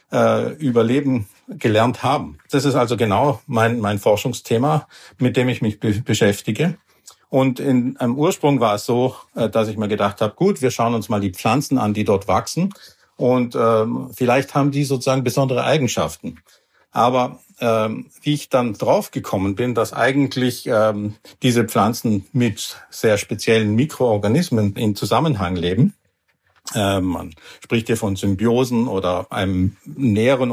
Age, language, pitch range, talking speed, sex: 50-69, German, 105-130 Hz, 145 wpm, male